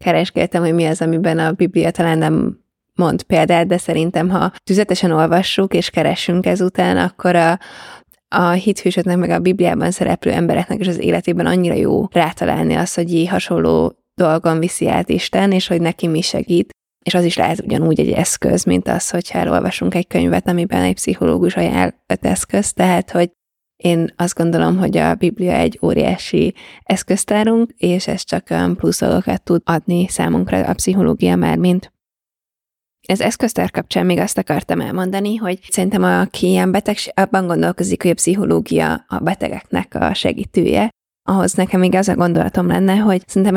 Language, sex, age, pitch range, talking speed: Hungarian, female, 20-39, 165-190 Hz, 160 wpm